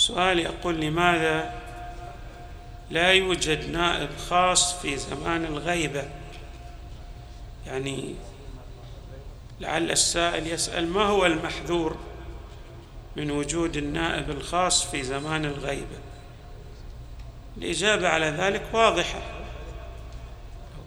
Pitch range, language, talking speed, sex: 135-170 Hz, Arabic, 85 wpm, male